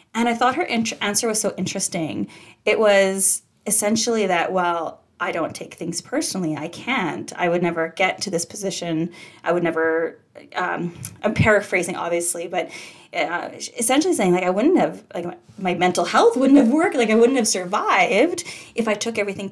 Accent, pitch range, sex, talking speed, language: American, 180-240 Hz, female, 180 wpm, English